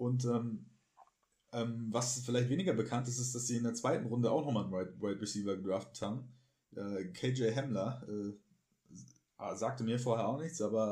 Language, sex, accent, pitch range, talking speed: German, male, German, 100-120 Hz, 175 wpm